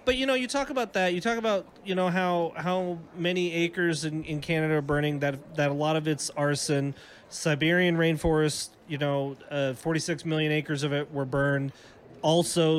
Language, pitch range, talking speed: English, 140-170 Hz, 190 wpm